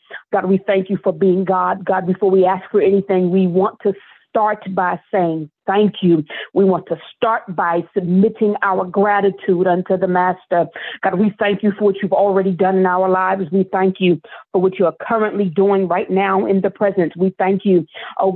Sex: female